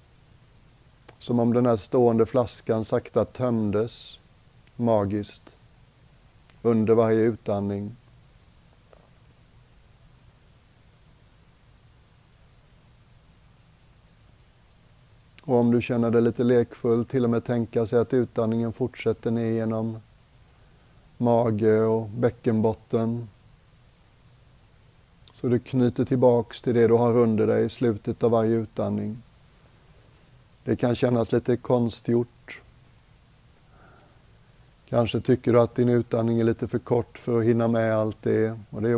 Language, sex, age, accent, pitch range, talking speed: Swedish, male, 30-49, native, 115-125 Hz, 110 wpm